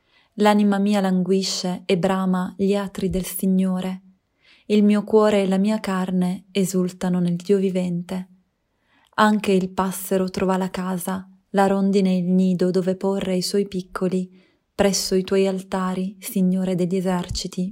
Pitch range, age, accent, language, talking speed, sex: 185-195 Hz, 20-39, native, Italian, 140 wpm, female